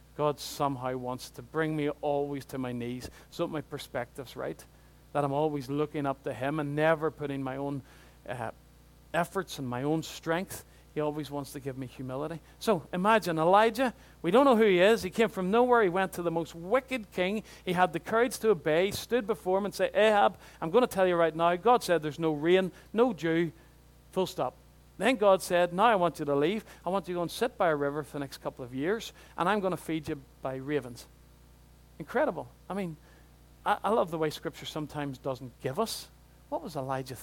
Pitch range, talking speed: 140-190 Hz, 220 wpm